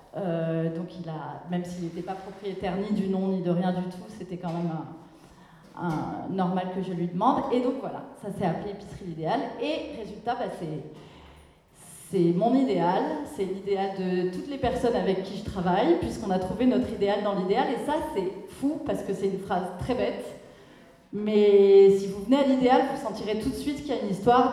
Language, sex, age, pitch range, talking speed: French, female, 30-49, 185-230 Hz, 210 wpm